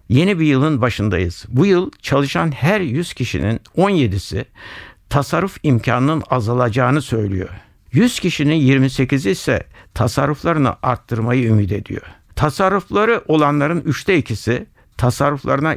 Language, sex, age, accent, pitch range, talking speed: Turkish, male, 60-79, native, 115-150 Hz, 105 wpm